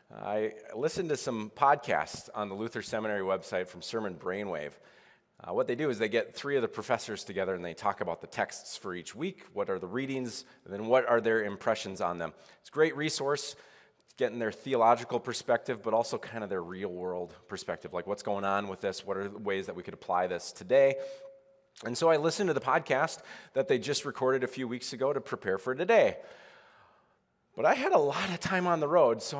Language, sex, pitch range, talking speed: English, male, 110-165 Hz, 220 wpm